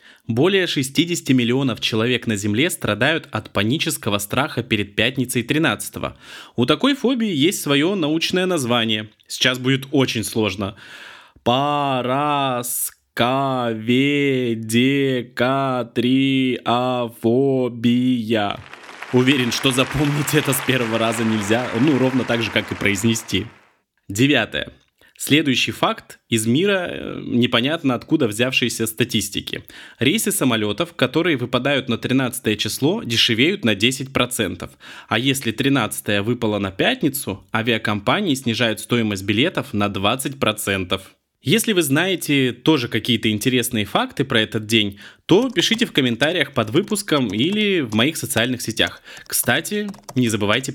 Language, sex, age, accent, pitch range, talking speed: Russian, male, 20-39, native, 110-135 Hz, 110 wpm